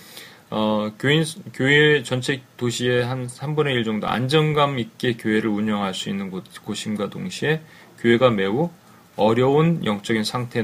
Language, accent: Korean, native